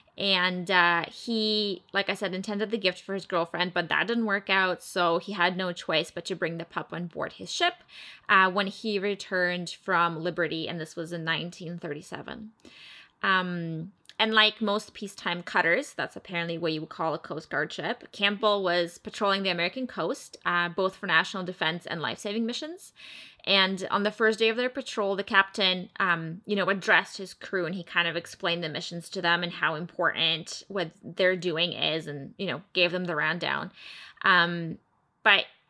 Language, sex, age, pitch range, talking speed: English, female, 20-39, 170-210 Hz, 190 wpm